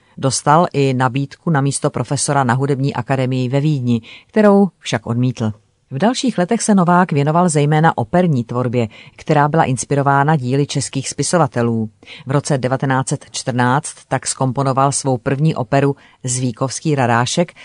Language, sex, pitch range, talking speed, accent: Czech, female, 125-155 Hz, 135 wpm, native